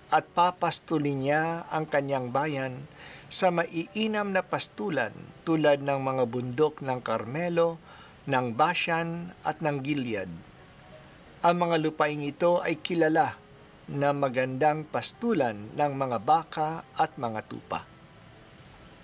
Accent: native